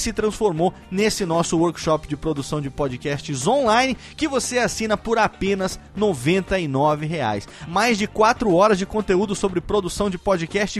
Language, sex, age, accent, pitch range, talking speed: Portuguese, male, 30-49, Brazilian, 180-225 Hz, 150 wpm